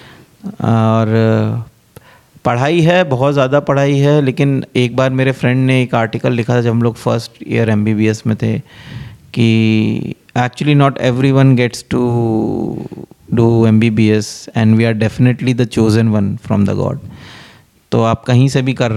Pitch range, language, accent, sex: 110-130 Hz, Hindi, native, male